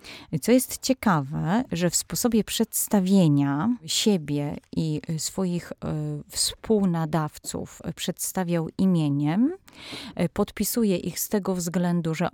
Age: 30-49